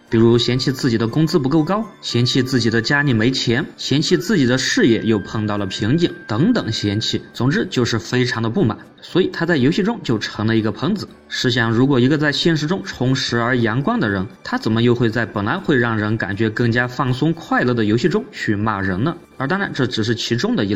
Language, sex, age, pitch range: Chinese, male, 20-39, 110-145 Hz